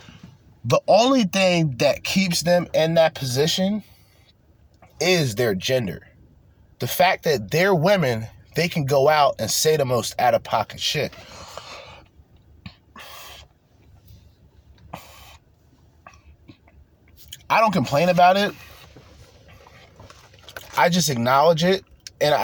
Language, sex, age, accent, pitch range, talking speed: English, male, 30-49, American, 115-170 Hz, 105 wpm